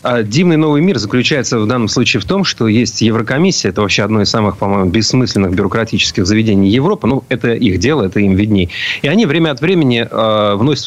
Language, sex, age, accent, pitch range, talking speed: Russian, male, 30-49, native, 105-130 Hz, 200 wpm